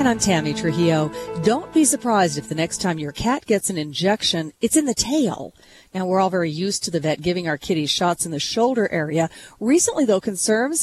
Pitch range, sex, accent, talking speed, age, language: 165-230 Hz, female, American, 215 wpm, 40-59, English